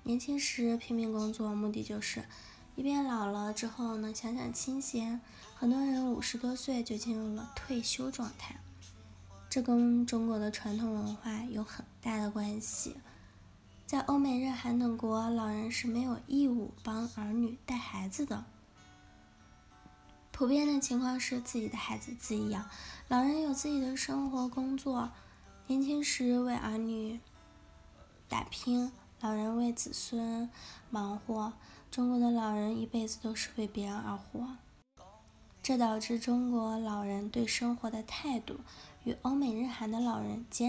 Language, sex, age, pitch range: Chinese, female, 10-29, 215-250 Hz